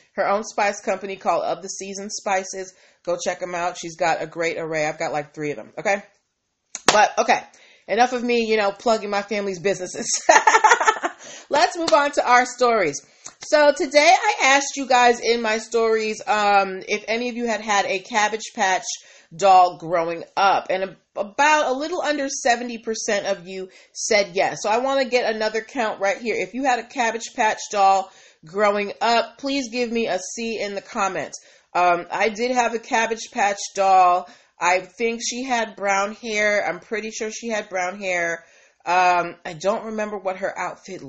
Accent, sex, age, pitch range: American, female, 30-49, 185-235 Hz